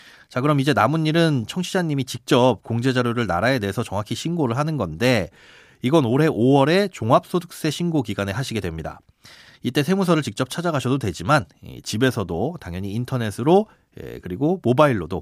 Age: 30-49